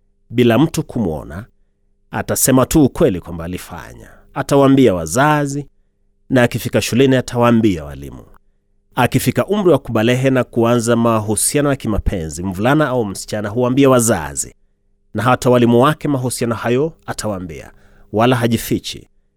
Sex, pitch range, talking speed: male, 100-125 Hz, 120 wpm